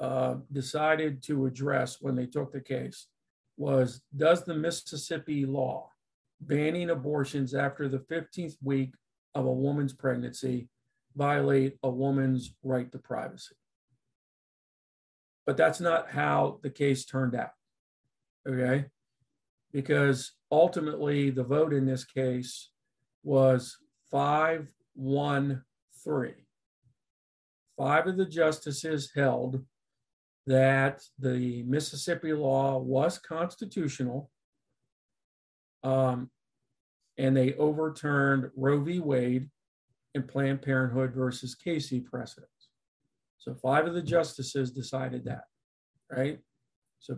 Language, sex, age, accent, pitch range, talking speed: English, male, 50-69, American, 130-150 Hz, 105 wpm